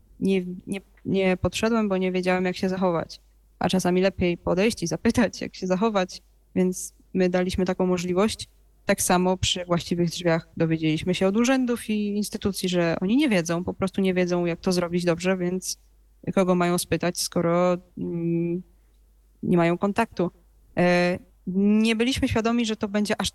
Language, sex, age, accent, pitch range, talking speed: Polish, female, 20-39, native, 175-210 Hz, 155 wpm